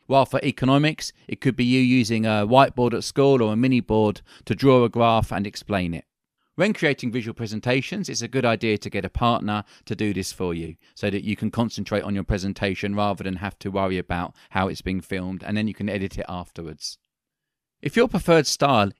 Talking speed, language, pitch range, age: 220 wpm, English, 105-130 Hz, 40-59